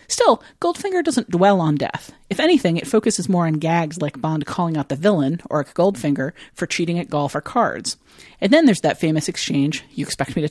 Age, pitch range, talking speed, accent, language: 40-59, 150-210 Hz, 210 wpm, American, English